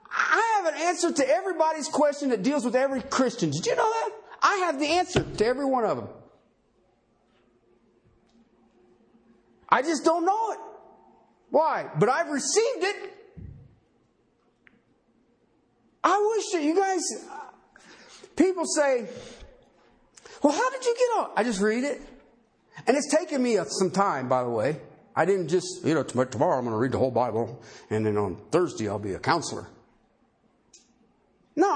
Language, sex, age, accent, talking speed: English, male, 50-69, American, 160 wpm